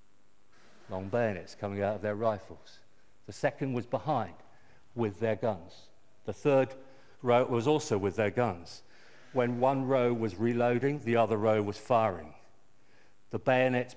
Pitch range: 100-125 Hz